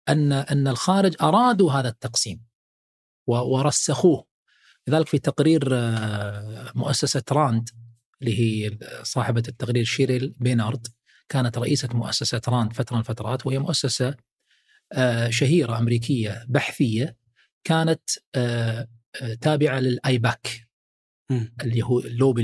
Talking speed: 95 wpm